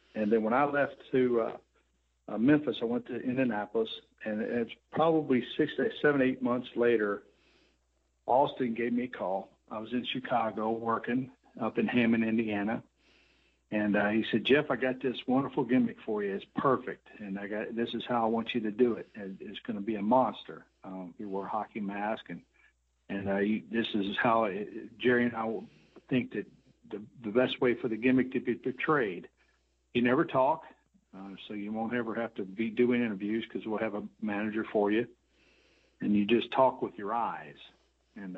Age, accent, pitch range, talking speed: 60-79, American, 105-125 Hz, 195 wpm